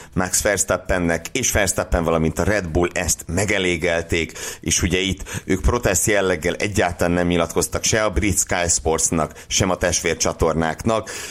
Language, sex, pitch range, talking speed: Hungarian, male, 85-110 Hz, 145 wpm